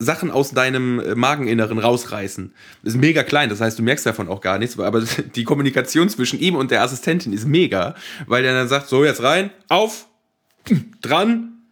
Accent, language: German, German